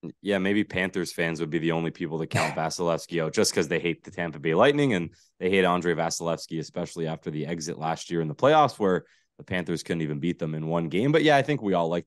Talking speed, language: 260 wpm, English